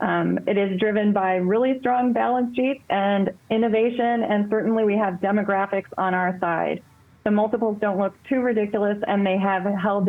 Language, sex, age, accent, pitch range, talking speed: English, female, 30-49, American, 195-225 Hz, 170 wpm